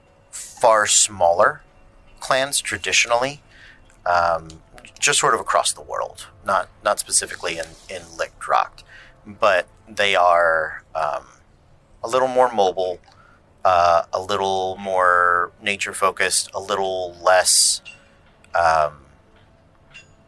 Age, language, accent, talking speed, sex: 30-49, English, American, 105 wpm, male